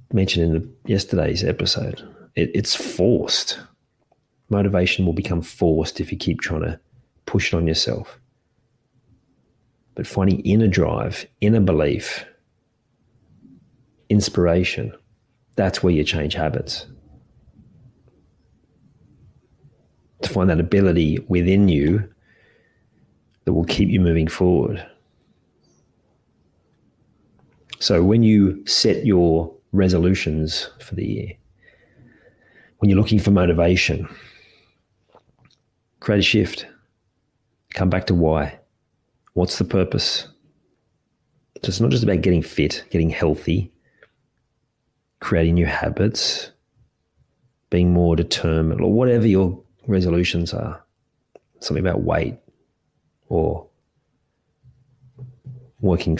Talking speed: 100 wpm